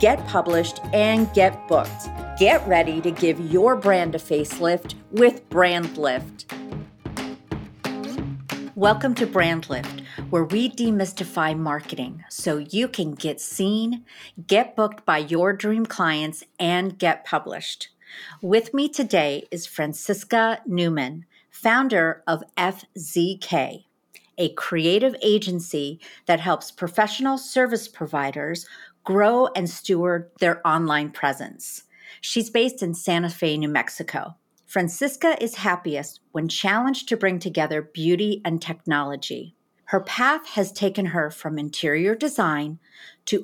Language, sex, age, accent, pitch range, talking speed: English, female, 50-69, American, 165-215 Hz, 120 wpm